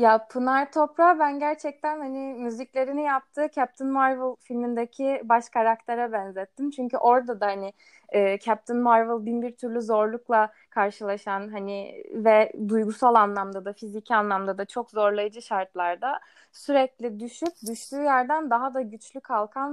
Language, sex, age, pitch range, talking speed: Turkish, female, 20-39, 220-275 Hz, 135 wpm